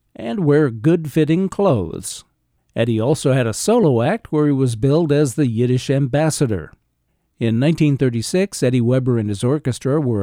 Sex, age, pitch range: male, 60-79, 120-155 Hz